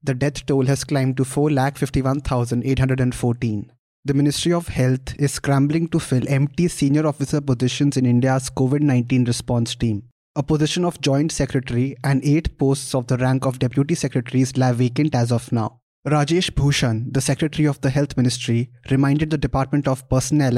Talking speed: 165 wpm